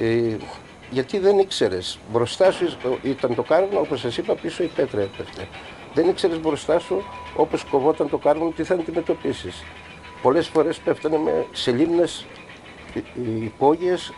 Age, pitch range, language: 60-79, 110-165 Hz, Greek